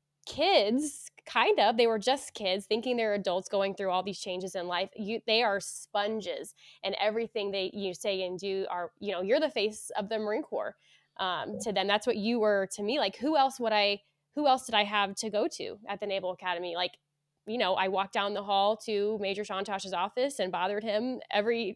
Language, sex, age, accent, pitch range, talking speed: English, female, 20-39, American, 190-225 Hz, 220 wpm